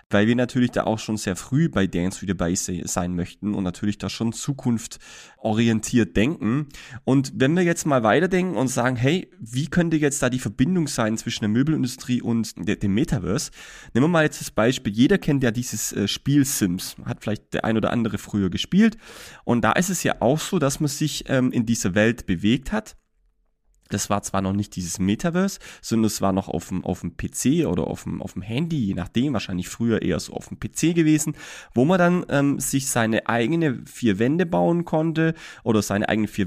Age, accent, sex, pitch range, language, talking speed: 30-49, German, male, 105-155 Hz, German, 205 wpm